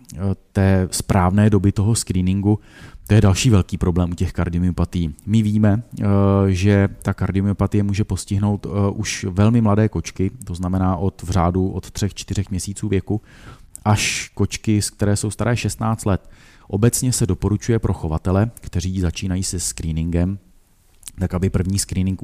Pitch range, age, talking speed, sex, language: 95-100 Hz, 30-49, 140 wpm, male, Czech